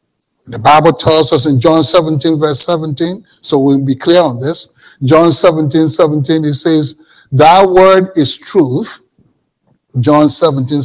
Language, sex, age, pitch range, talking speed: English, male, 60-79, 145-195 Hz, 145 wpm